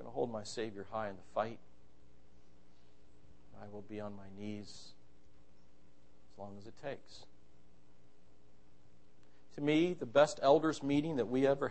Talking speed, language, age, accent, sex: 150 wpm, English, 60-79, American, male